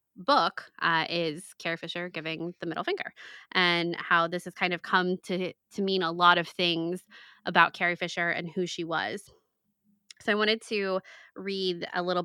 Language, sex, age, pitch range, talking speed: English, female, 20-39, 170-200 Hz, 180 wpm